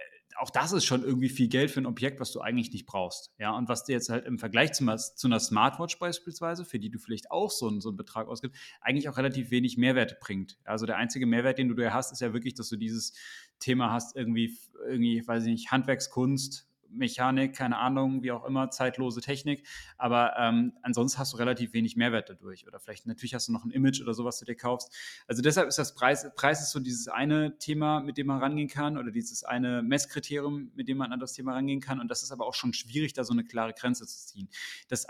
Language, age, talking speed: German, 30-49, 240 wpm